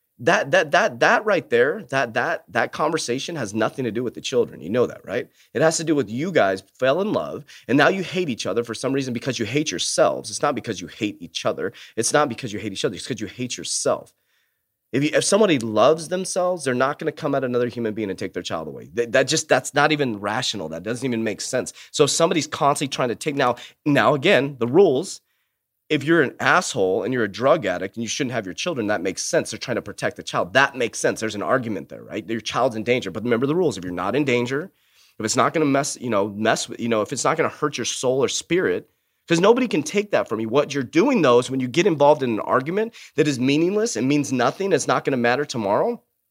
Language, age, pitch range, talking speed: English, 30-49, 120-165 Hz, 265 wpm